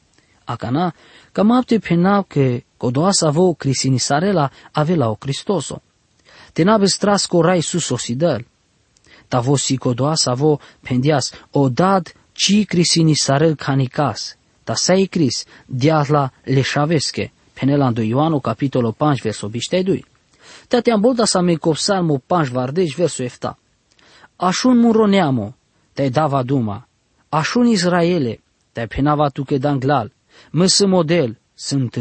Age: 20-39